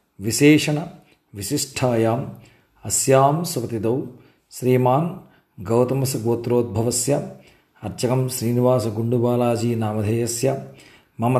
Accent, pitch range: native, 120-140 Hz